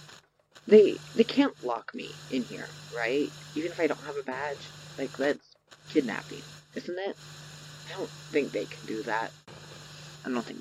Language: English